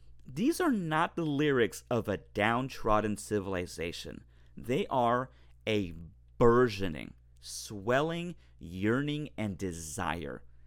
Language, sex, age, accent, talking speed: English, male, 30-49, American, 95 wpm